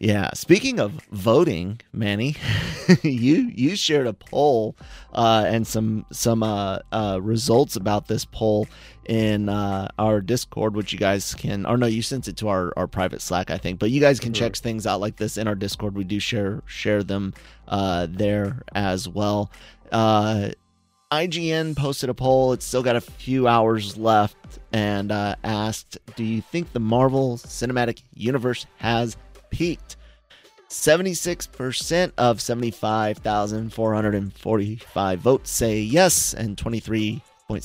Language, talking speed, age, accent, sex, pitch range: English, 165 wpm, 30-49, American, male, 100-125 Hz